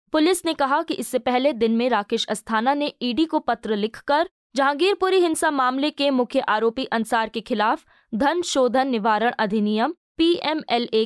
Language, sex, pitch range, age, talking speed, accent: Hindi, female, 220-285 Hz, 20-39, 155 wpm, native